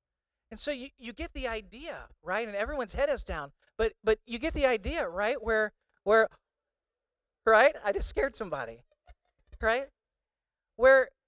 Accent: American